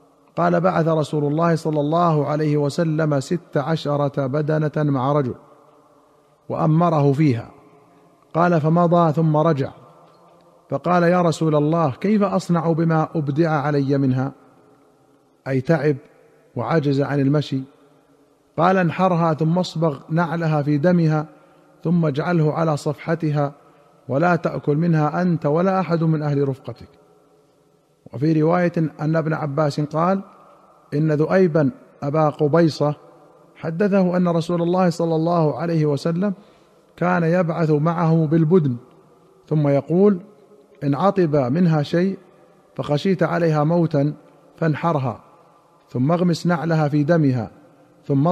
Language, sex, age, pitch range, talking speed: Arabic, male, 50-69, 145-170 Hz, 115 wpm